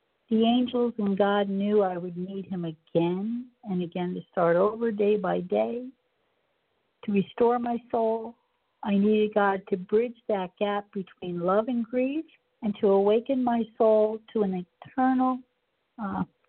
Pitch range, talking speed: 180-225 Hz, 155 wpm